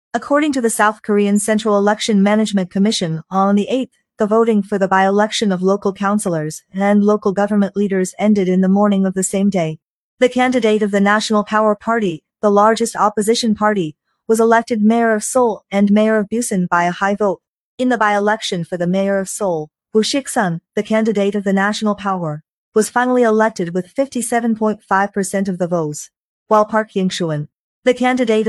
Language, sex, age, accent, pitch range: Chinese, female, 40-59, American, 195-225 Hz